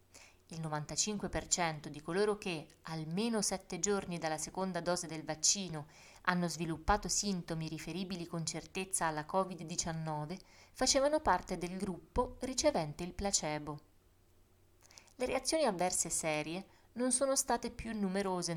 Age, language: 20-39, Italian